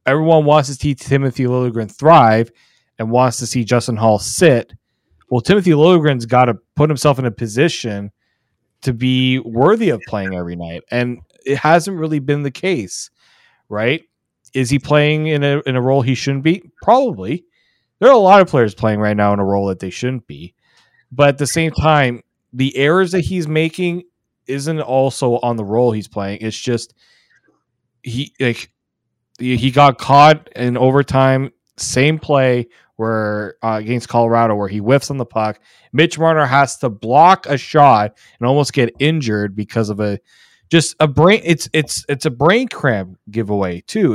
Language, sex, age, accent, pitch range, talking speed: English, male, 30-49, American, 115-150 Hz, 175 wpm